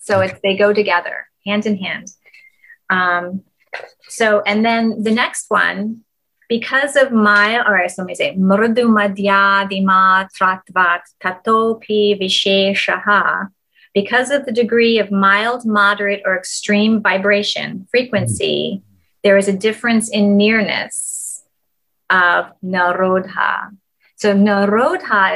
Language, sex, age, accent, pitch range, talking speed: English, female, 30-49, American, 185-215 Hz, 100 wpm